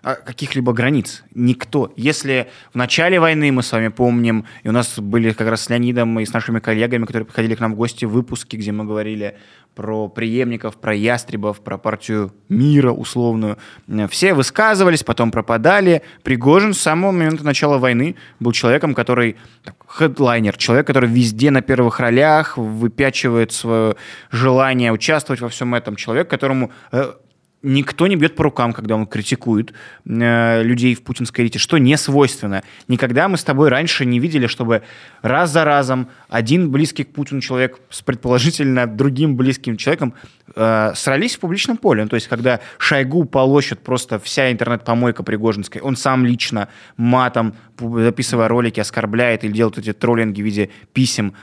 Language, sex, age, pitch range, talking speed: Russian, male, 20-39, 110-135 Hz, 160 wpm